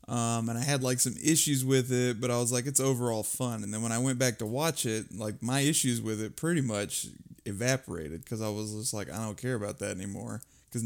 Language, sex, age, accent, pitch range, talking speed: English, male, 20-39, American, 110-135 Hz, 250 wpm